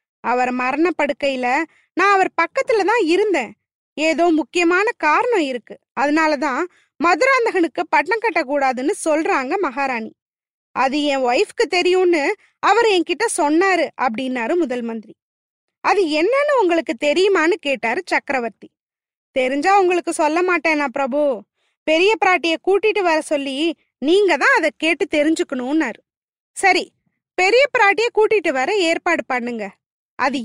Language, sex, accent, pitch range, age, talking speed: Tamil, female, native, 285-390 Hz, 20-39, 110 wpm